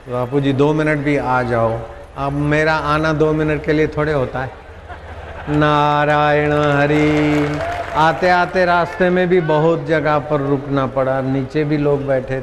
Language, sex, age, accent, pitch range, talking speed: Hindi, male, 50-69, native, 140-175 Hz, 160 wpm